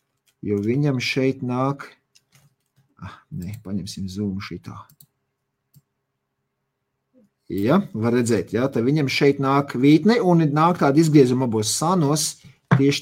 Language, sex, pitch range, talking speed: English, male, 100-135 Hz, 115 wpm